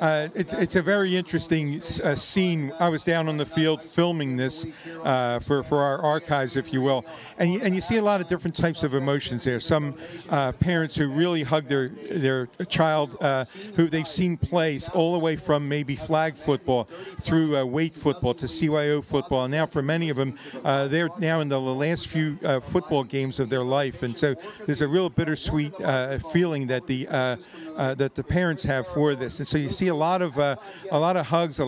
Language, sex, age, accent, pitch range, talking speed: English, male, 50-69, American, 135-160 Hz, 220 wpm